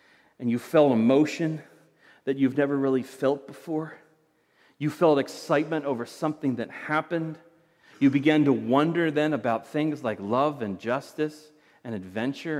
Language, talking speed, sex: English, 145 wpm, male